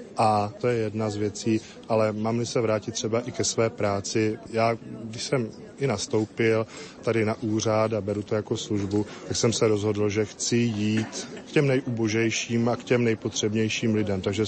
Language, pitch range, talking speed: Slovak, 110-120 Hz, 180 wpm